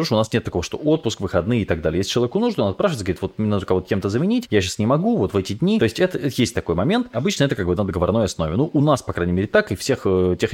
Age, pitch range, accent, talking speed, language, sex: 20-39, 100-150 Hz, native, 315 wpm, Russian, male